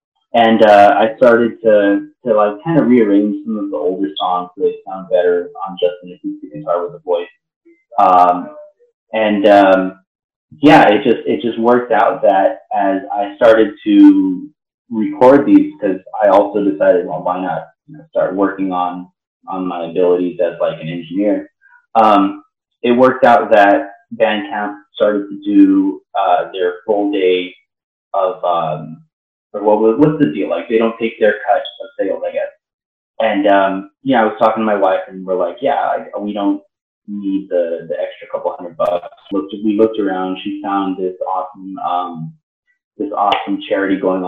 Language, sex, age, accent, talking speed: English, male, 30-49, American, 170 wpm